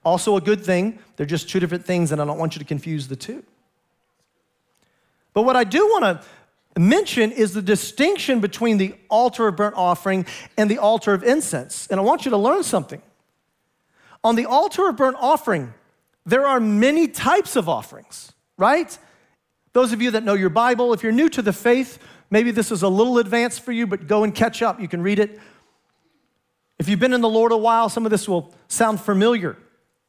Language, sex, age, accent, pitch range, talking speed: English, male, 40-59, American, 190-245 Hz, 205 wpm